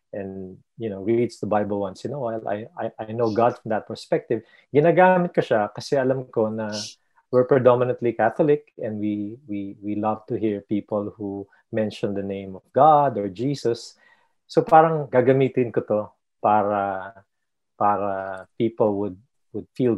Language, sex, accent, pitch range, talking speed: English, male, Filipino, 100-125 Hz, 160 wpm